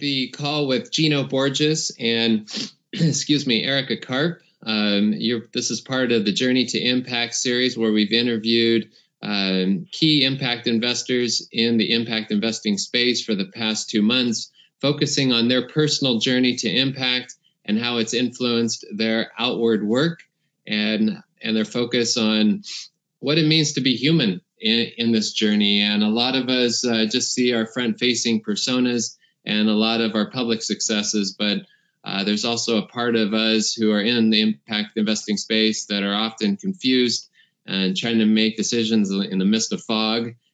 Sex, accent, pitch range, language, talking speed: male, American, 110-125 Hz, English, 165 wpm